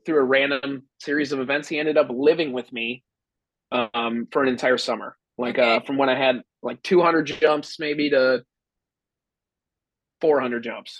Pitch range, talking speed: 125-145 Hz, 165 wpm